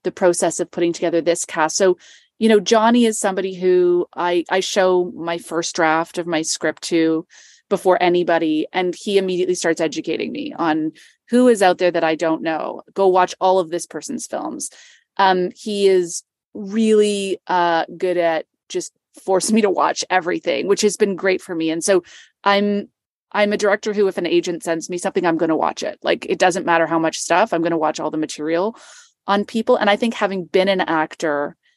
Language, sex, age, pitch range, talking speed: English, female, 30-49, 170-200 Hz, 205 wpm